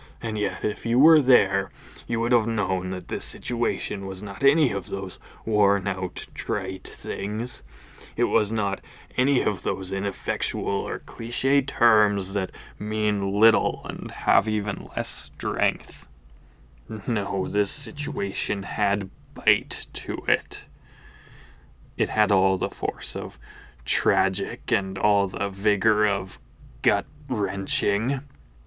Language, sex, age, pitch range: English, male, 20-39, 95-110 Hz